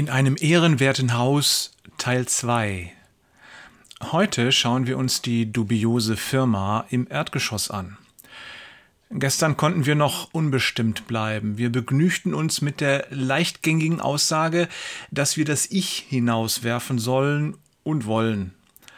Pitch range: 120-150 Hz